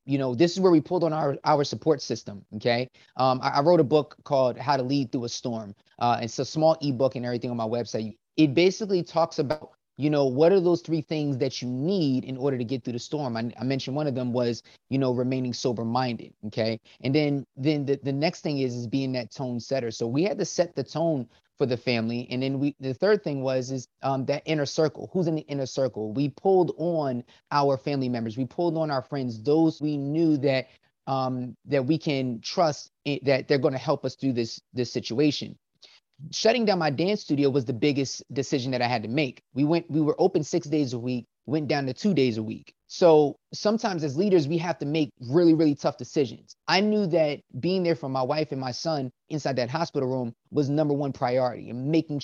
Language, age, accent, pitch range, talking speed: English, 20-39, American, 125-155 Hz, 235 wpm